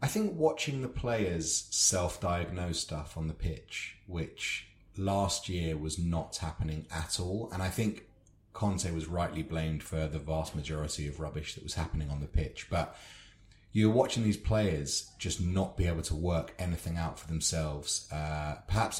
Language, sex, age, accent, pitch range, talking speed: English, male, 30-49, British, 80-100 Hz, 175 wpm